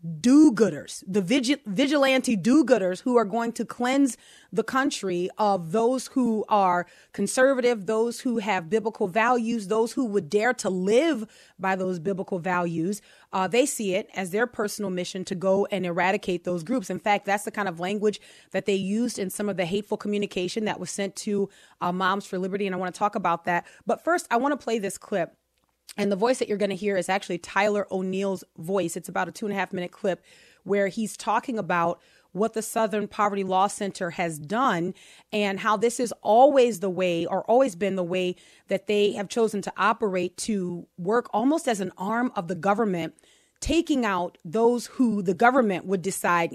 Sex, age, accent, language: female, 30-49, American, English